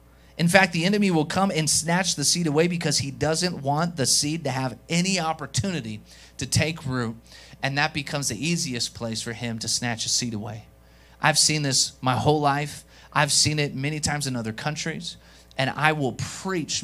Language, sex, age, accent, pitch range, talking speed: English, male, 30-49, American, 120-155 Hz, 195 wpm